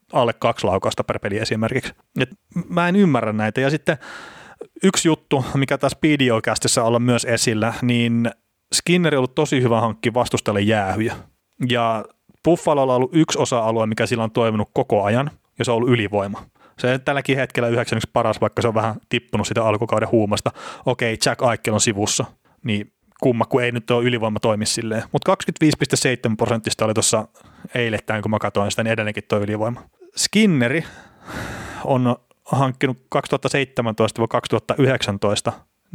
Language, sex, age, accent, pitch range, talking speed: Finnish, male, 30-49, native, 110-140 Hz, 150 wpm